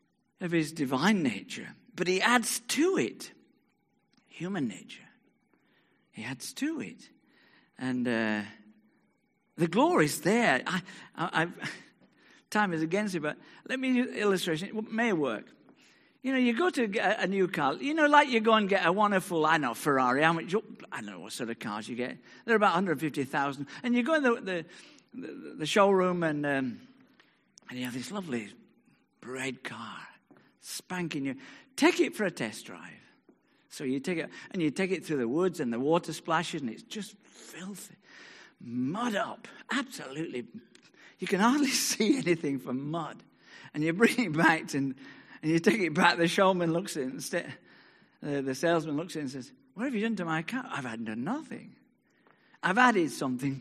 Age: 50-69